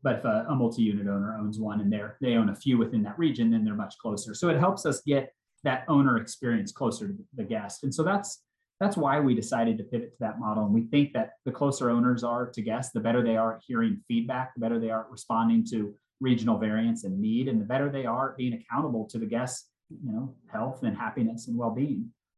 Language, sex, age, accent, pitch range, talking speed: English, male, 30-49, American, 115-145 Hz, 240 wpm